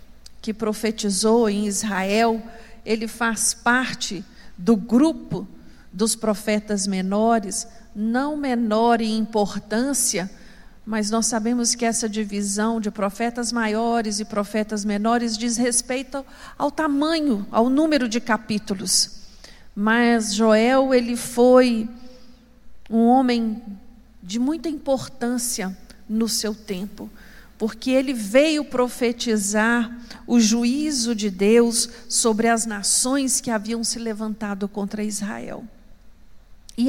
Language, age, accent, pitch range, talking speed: Portuguese, 50-69, Brazilian, 220-260 Hz, 105 wpm